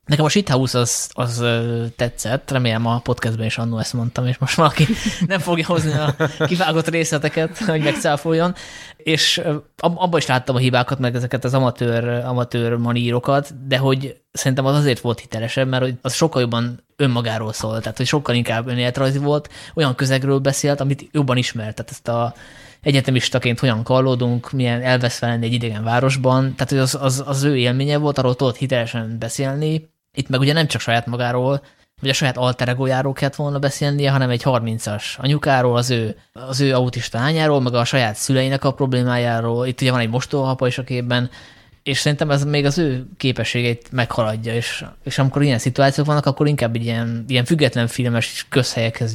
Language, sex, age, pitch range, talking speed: Hungarian, male, 20-39, 120-140 Hz, 180 wpm